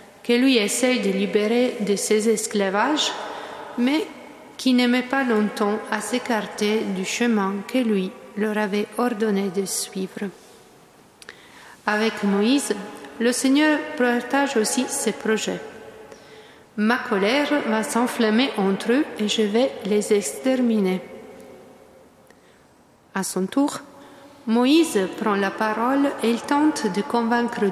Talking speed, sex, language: 120 wpm, female, French